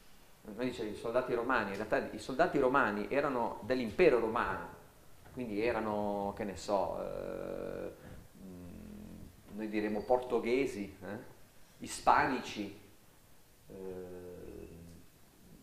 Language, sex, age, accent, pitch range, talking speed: Italian, male, 40-59, native, 100-140 Hz, 95 wpm